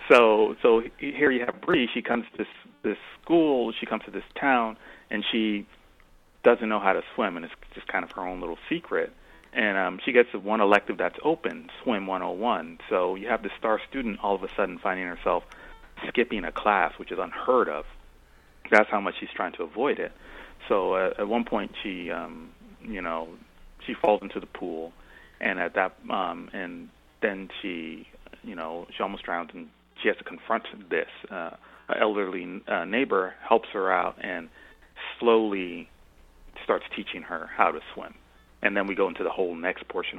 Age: 30-49